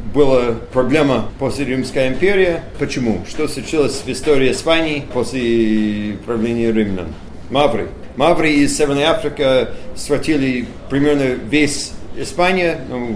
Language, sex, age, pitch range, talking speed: Russian, male, 40-59, 125-160 Hz, 110 wpm